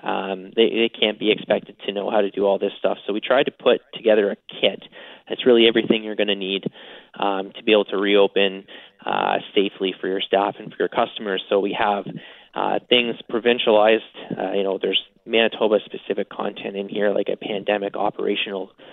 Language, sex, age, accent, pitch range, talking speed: English, male, 20-39, American, 100-115 Hz, 195 wpm